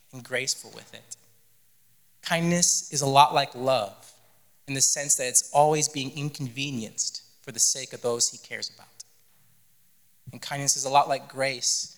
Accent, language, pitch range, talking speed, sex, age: American, English, 120-145 Hz, 165 wpm, male, 20-39